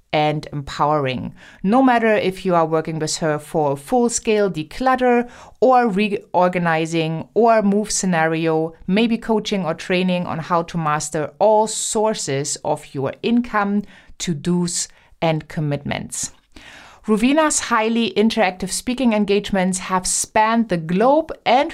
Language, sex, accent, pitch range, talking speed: English, female, German, 165-215 Hz, 120 wpm